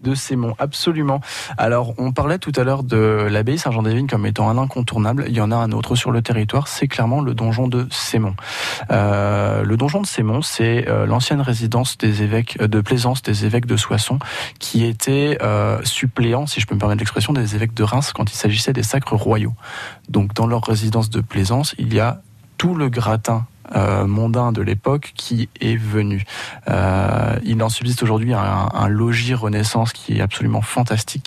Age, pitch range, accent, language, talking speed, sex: 20-39, 110-125 Hz, French, French, 195 wpm, male